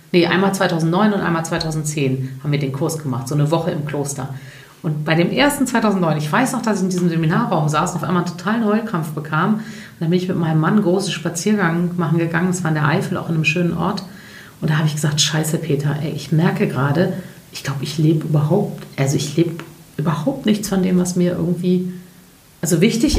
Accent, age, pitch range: German, 40-59, 155-180 Hz